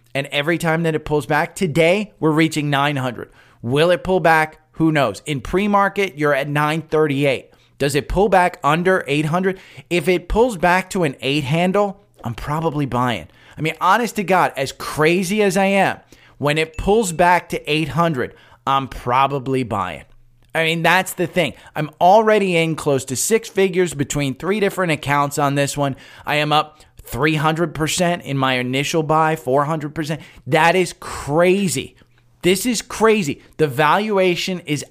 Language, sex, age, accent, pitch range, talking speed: English, male, 20-39, American, 135-180 Hz, 165 wpm